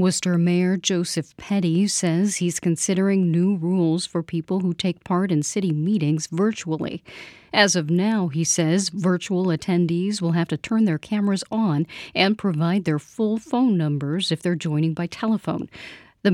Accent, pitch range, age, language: American, 165-200 Hz, 40-59, English